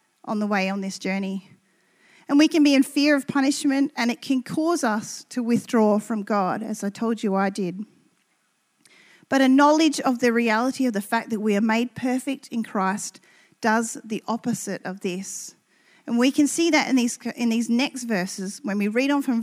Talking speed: 205 wpm